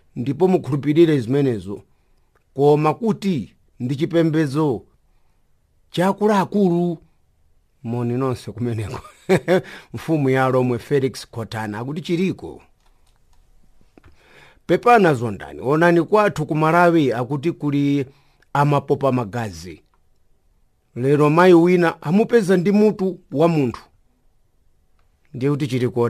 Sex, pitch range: male, 125-175 Hz